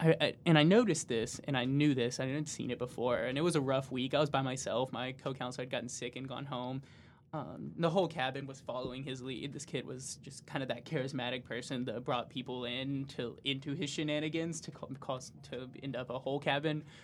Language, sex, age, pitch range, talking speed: English, male, 20-39, 130-145 Hz, 220 wpm